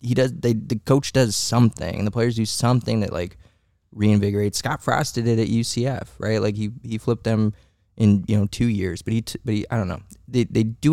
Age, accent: 20-39, American